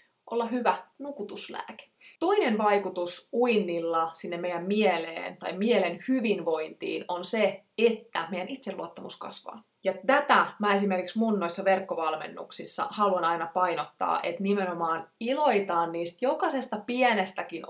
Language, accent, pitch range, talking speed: Finnish, native, 175-235 Hz, 115 wpm